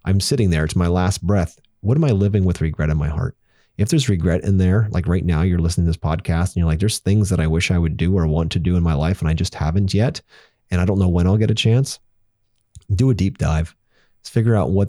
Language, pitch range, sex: English, 85-100 Hz, male